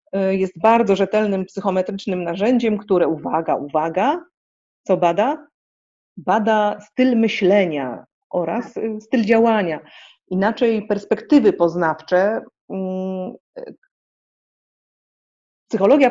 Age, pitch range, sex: 40-59, 180-225 Hz, female